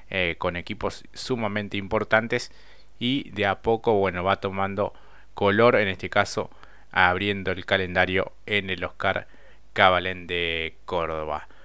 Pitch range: 95-110 Hz